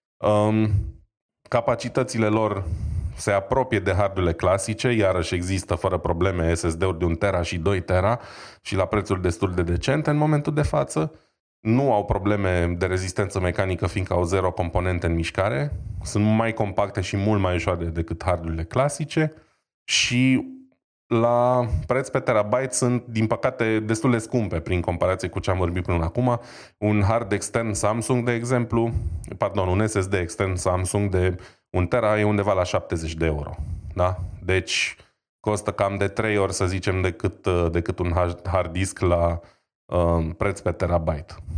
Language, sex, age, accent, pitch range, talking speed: Romanian, male, 20-39, native, 90-110 Hz, 155 wpm